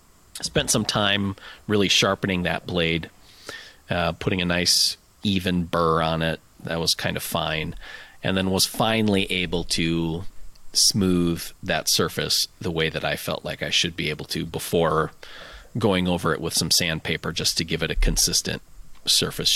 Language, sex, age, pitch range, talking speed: English, male, 30-49, 85-100 Hz, 165 wpm